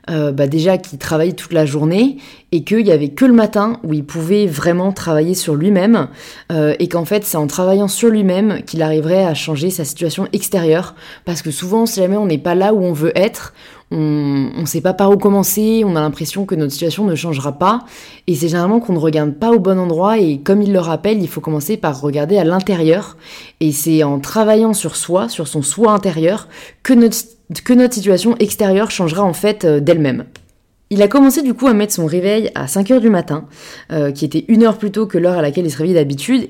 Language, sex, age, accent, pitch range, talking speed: French, female, 20-39, French, 155-205 Hz, 225 wpm